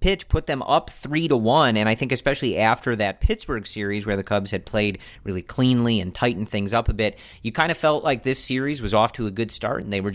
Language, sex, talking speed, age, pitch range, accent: English, male, 260 wpm, 40-59, 95-115 Hz, American